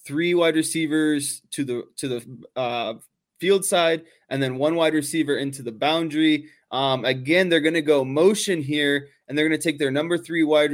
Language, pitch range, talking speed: English, 135-160 Hz, 195 wpm